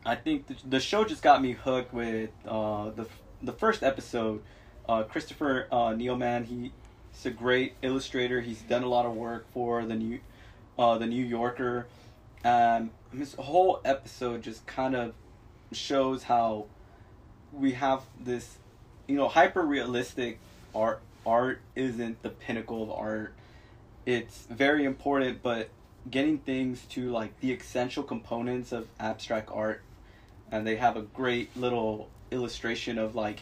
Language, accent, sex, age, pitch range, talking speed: English, American, male, 20-39, 110-130 Hz, 145 wpm